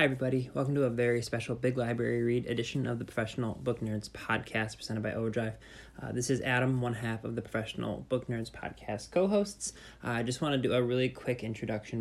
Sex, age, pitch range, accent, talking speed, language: male, 20-39, 110-125 Hz, American, 215 wpm, English